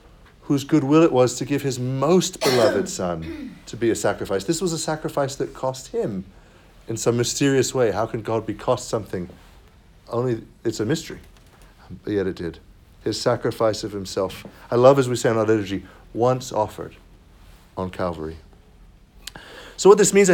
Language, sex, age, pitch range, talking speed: English, male, 50-69, 110-160 Hz, 175 wpm